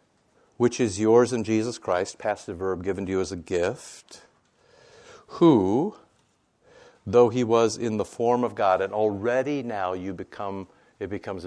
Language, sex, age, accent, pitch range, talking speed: English, male, 60-79, American, 95-115 Hz, 150 wpm